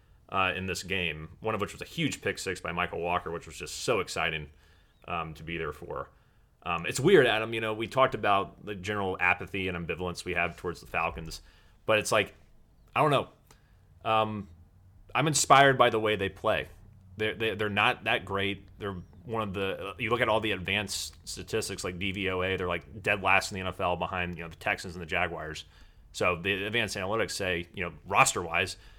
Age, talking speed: 30-49, 205 wpm